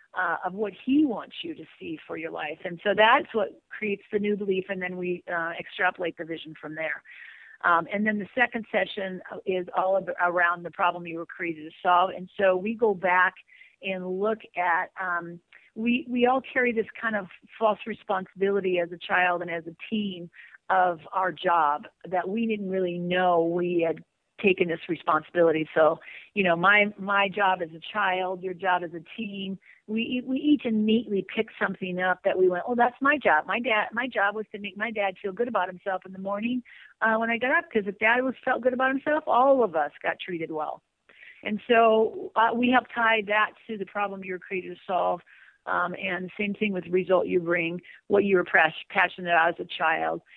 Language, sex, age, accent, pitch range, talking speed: English, female, 40-59, American, 175-220 Hz, 215 wpm